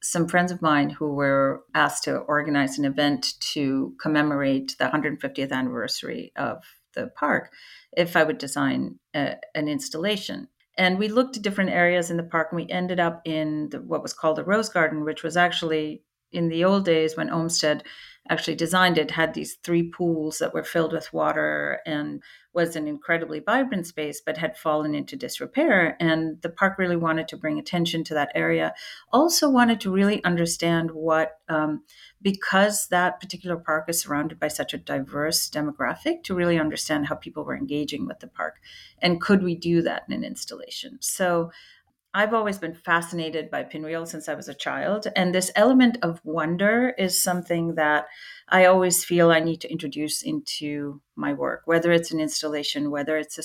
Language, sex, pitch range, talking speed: English, female, 155-190 Hz, 180 wpm